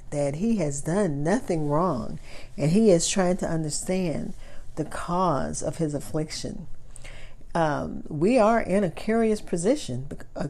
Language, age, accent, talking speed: English, 50-69, American, 145 wpm